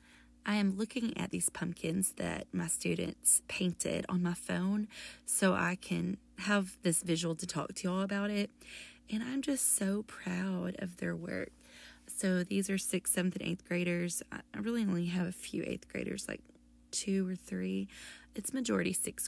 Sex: female